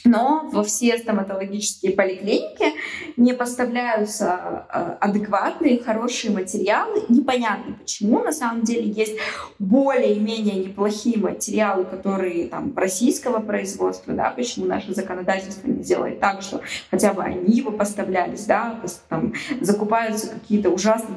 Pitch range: 195-240 Hz